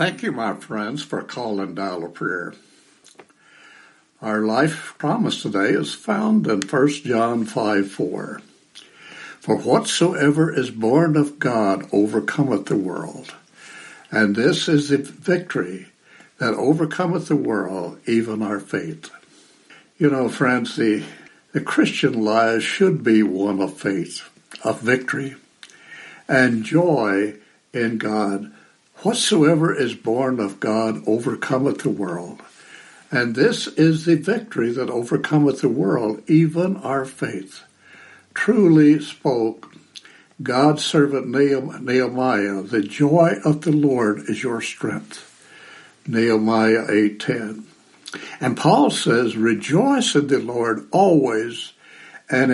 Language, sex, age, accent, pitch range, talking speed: English, male, 60-79, American, 110-150 Hz, 120 wpm